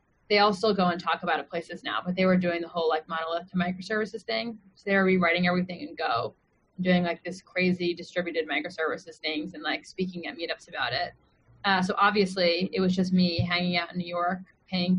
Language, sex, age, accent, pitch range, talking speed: English, female, 20-39, American, 180-215 Hz, 220 wpm